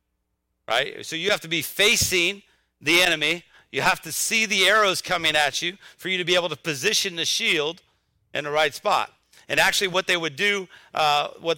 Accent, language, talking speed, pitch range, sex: American, English, 200 wpm, 155-195 Hz, male